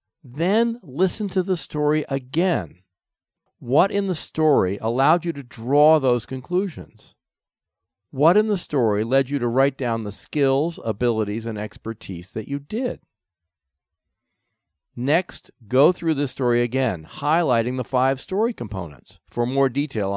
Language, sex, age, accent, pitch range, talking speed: English, male, 50-69, American, 95-135 Hz, 140 wpm